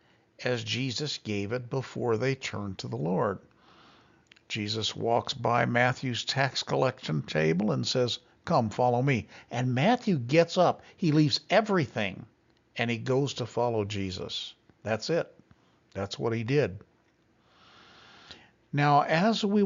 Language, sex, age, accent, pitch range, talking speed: English, male, 60-79, American, 110-150 Hz, 135 wpm